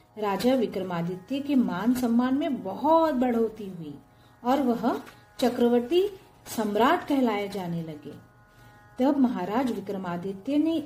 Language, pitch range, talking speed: Hindi, 170-275 Hz, 110 wpm